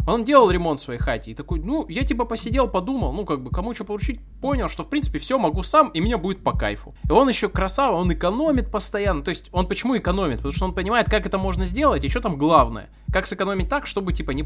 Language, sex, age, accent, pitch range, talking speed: Russian, male, 20-39, native, 145-215 Hz, 255 wpm